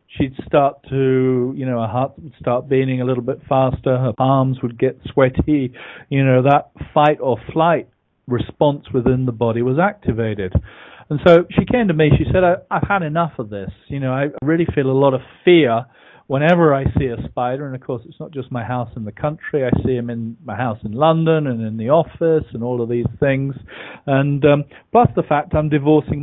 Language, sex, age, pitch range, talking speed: English, male, 40-59, 120-155 Hz, 215 wpm